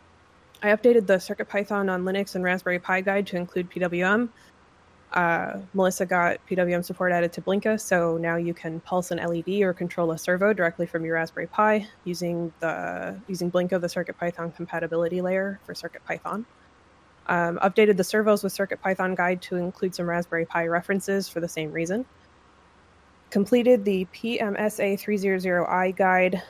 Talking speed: 155 wpm